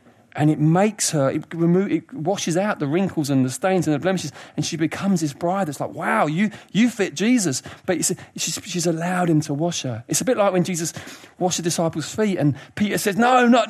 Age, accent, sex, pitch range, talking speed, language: 40-59, British, male, 135-200 Hz, 235 wpm, English